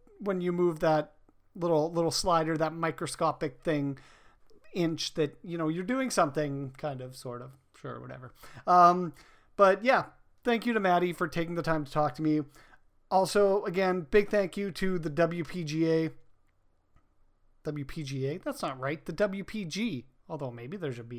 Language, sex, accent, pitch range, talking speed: English, male, American, 150-185 Hz, 160 wpm